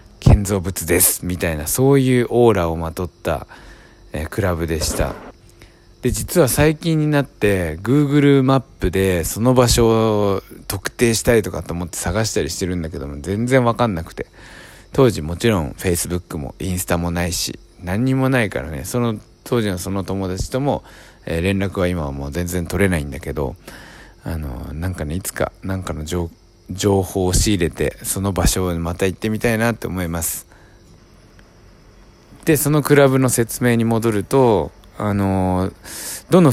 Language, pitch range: Japanese, 85-120 Hz